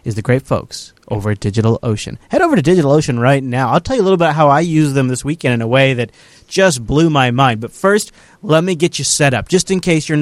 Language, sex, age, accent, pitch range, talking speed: English, male, 30-49, American, 120-155 Hz, 270 wpm